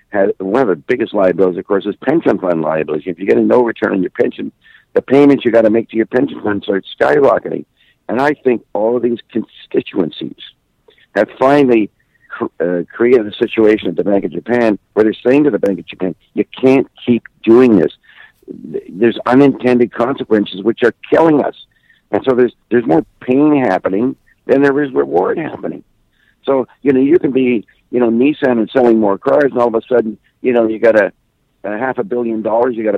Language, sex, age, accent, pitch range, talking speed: English, male, 60-79, American, 100-125 Hz, 205 wpm